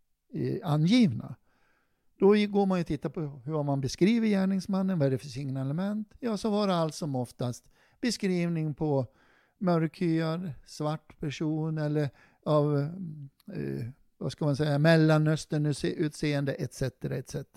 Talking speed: 130 wpm